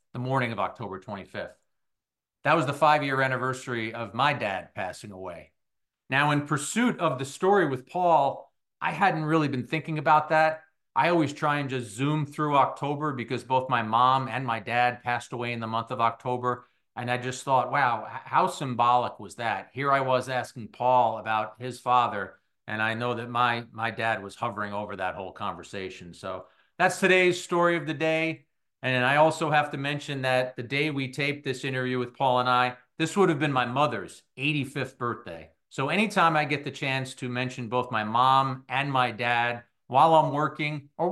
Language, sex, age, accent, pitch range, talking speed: English, male, 50-69, American, 120-150 Hz, 195 wpm